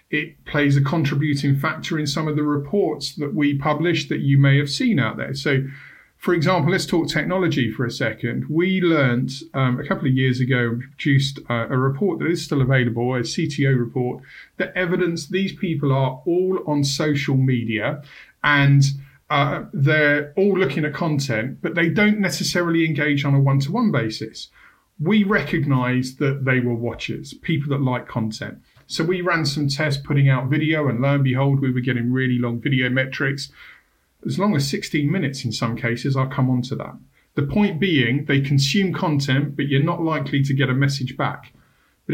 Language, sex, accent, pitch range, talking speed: English, male, British, 130-160 Hz, 190 wpm